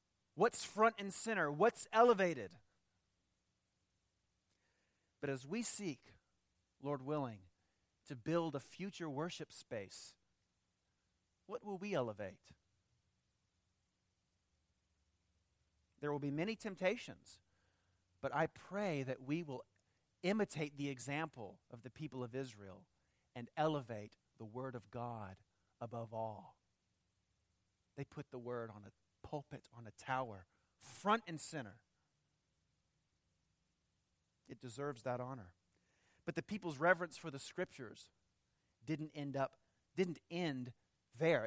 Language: English